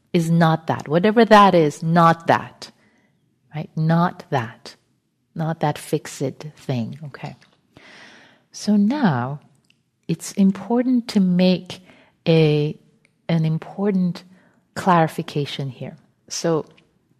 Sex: female